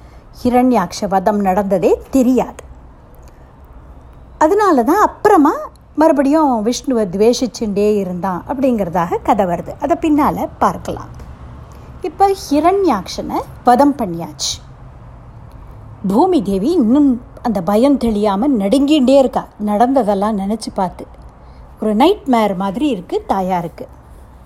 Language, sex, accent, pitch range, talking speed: Tamil, female, native, 185-285 Hz, 95 wpm